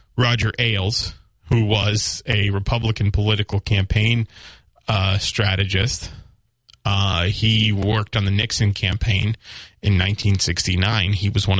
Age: 30-49